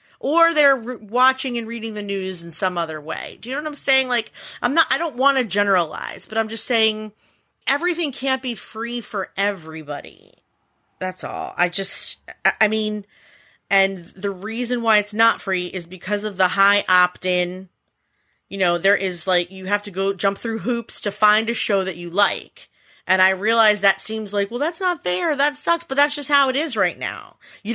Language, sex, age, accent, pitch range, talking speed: English, female, 30-49, American, 205-295 Hz, 205 wpm